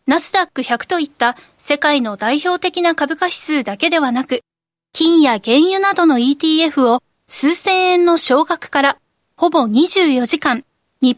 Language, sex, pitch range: Japanese, female, 260-345 Hz